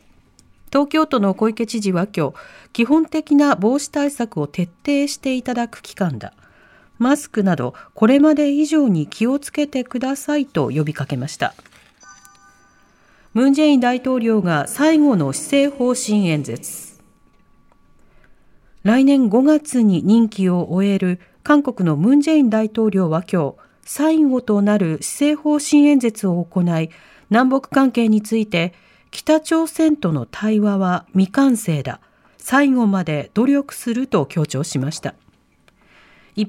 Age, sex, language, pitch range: 40-59, female, Japanese, 185-280 Hz